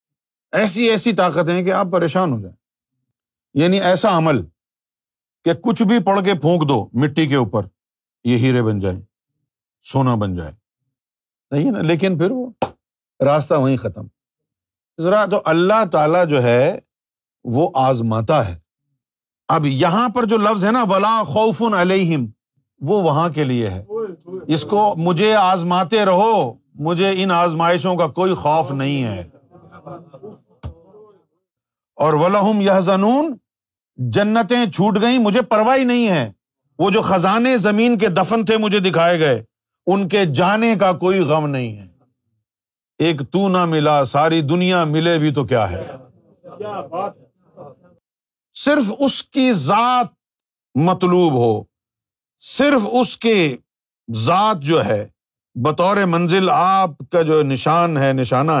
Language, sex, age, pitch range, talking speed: Urdu, male, 50-69, 130-205 Hz, 135 wpm